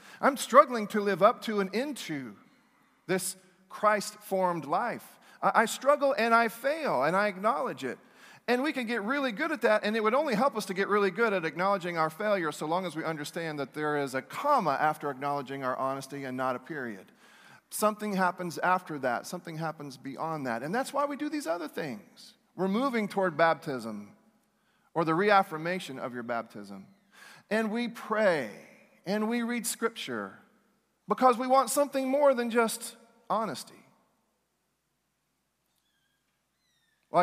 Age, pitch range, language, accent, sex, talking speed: 40-59, 155-230 Hz, English, American, male, 165 wpm